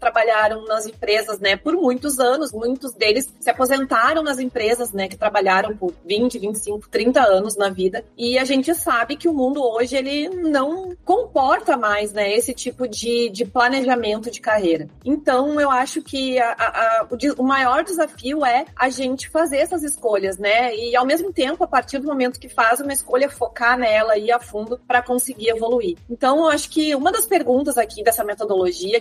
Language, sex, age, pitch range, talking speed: Portuguese, female, 30-49, 220-285 Hz, 185 wpm